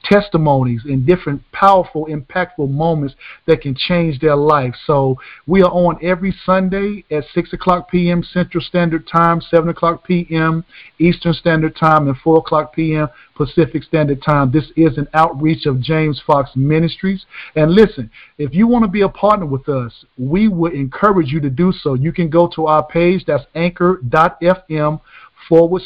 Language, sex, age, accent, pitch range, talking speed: English, male, 50-69, American, 145-175 Hz, 165 wpm